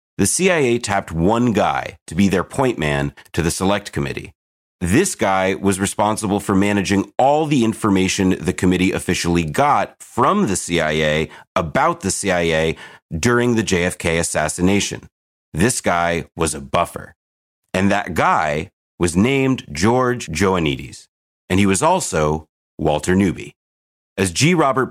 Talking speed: 140 wpm